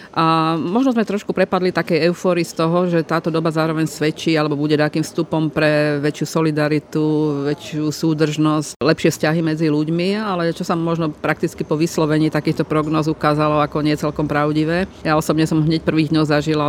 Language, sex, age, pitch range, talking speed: Slovak, female, 40-59, 150-160 Hz, 175 wpm